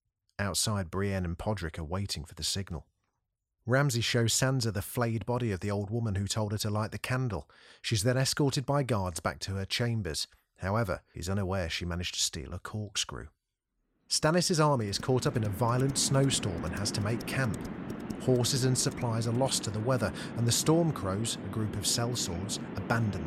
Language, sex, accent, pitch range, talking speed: English, male, British, 100-125 Hz, 190 wpm